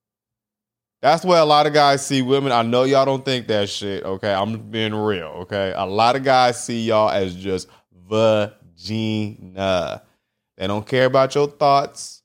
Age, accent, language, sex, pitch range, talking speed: 20-39, American, English, male, 110-155 Hz, 175 wpm